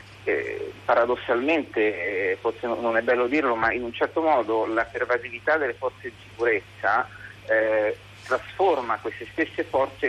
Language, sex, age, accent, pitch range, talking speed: Italian, male, 40-59, native, 110-135 Hz, 145 wpm